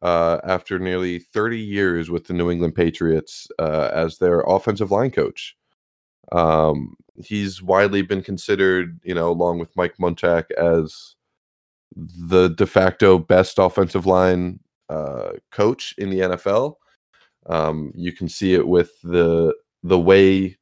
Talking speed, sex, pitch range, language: 140 wpm, male, 85-105 Hz, English